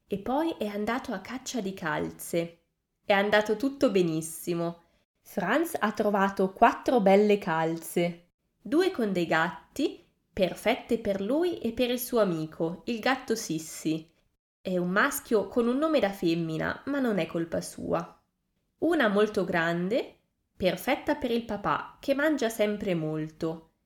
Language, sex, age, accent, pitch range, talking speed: Italian, female, 20-39, native, 175-255 Hz, 145 wpm